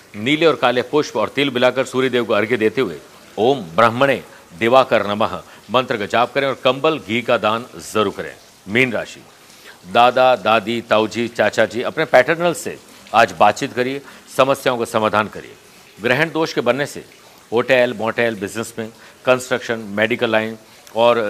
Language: Hindi